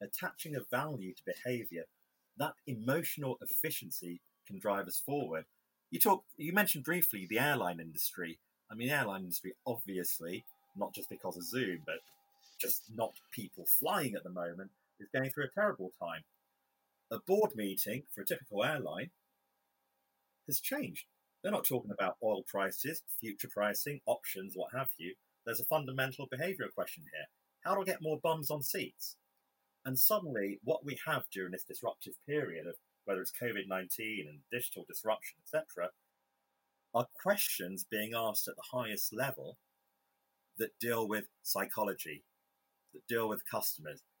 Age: 30-49